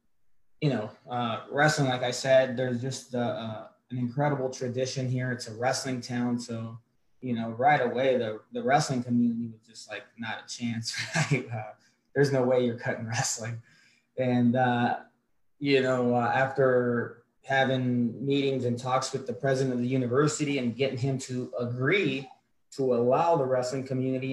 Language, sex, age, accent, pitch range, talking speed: English, male, 20-39, American, 120-130 Hz, 170 wpm